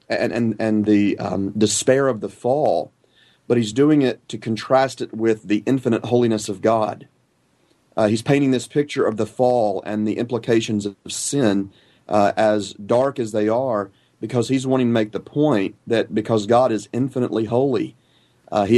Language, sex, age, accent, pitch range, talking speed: English, male, 40-59, American, 105-120 Hz, 180 wpm